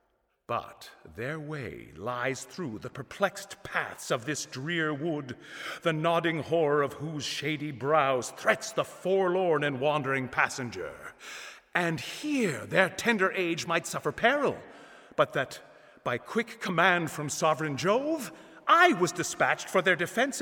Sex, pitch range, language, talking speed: male, 150-215 Hz, English, 140 wpm